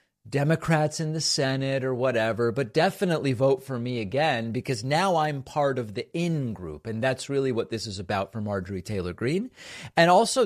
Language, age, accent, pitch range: English, 40-59, American, 115-165 Hz